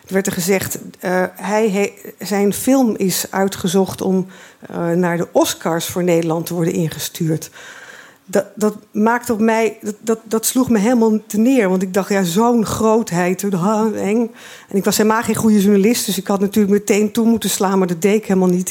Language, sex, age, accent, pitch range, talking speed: Dutch, female, 50-69, Dutch, 185-225 Hz, 190 wpm